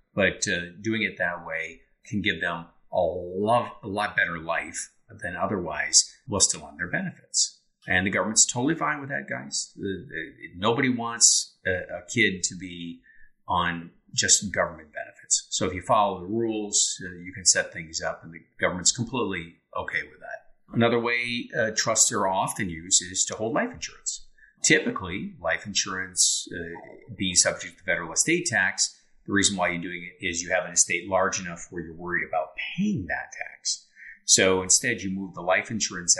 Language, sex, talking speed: English, male, 180 wpm